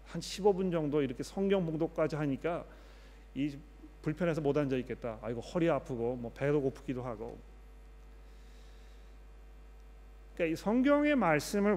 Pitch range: 140-185 Hz